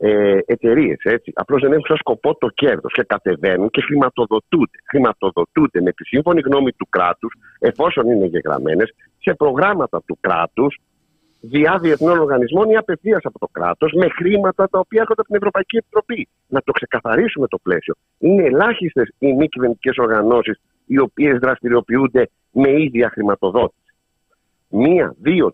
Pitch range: 110-170 Hz